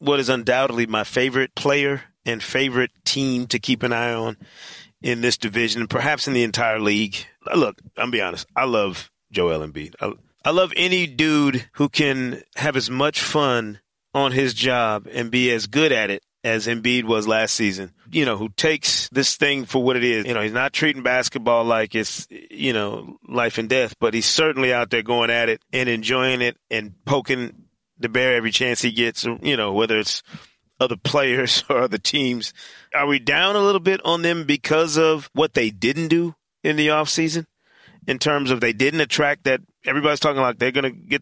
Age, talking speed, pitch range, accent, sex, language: 30-49, 200 wpm, 120-145 Hz, American, male, English